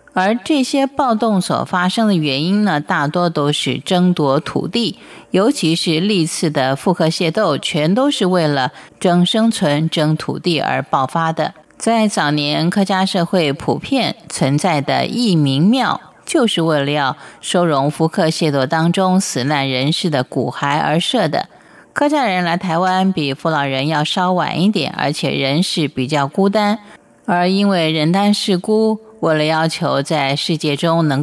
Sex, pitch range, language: female, 150-200 Hz, Chinese